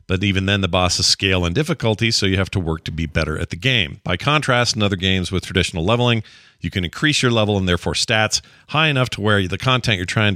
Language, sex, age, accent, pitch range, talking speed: English, male, 40-59, American, 95-120 Hz, 250 wpm